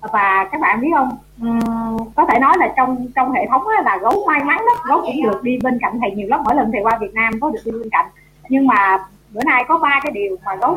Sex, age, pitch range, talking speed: female, 20-39, 215-310 Hz, 275 wpm